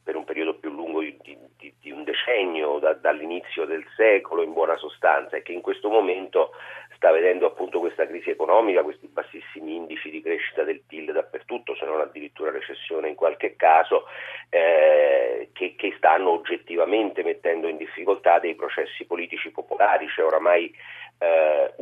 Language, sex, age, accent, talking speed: Italian, male, 40-59, native, 155 wpm